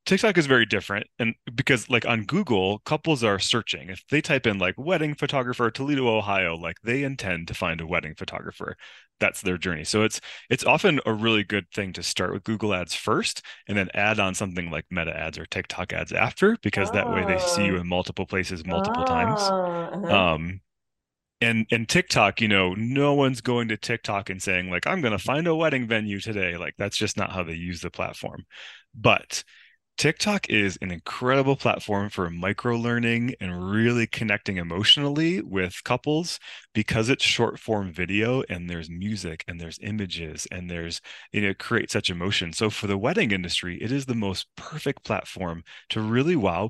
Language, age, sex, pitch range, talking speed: English, 20-39, male, 95-130 Hz, 190 wpm